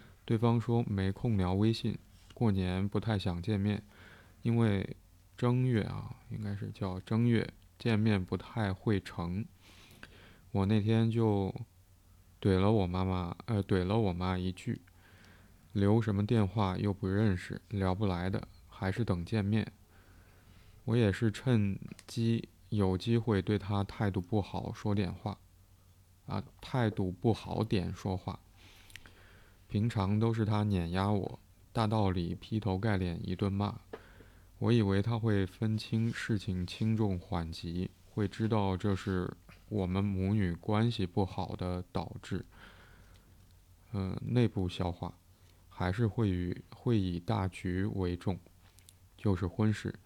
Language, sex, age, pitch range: Chinese, male, 20-39, 95-110 Hz